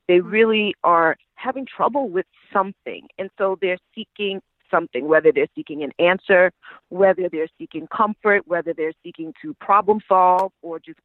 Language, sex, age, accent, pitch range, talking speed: English, female, 30-49, American, 175-225 Hz, 155 wpm